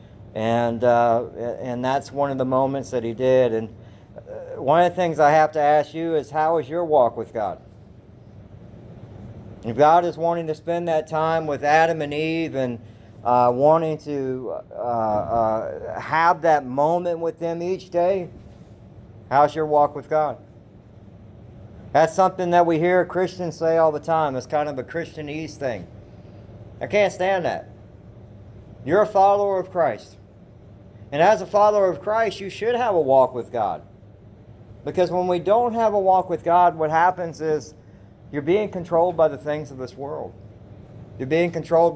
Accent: American